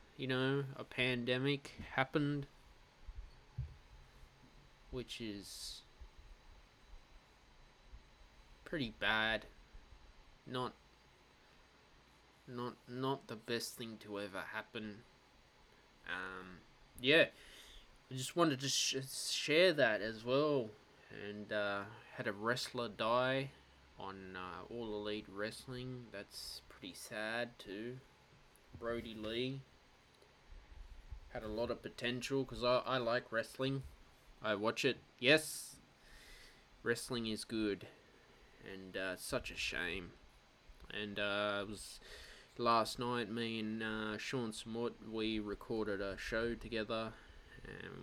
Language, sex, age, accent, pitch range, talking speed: English, male, 20-39, Australian, 95-120 Hz, 105 wpm